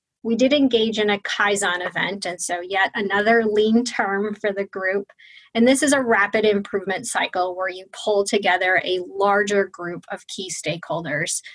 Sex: female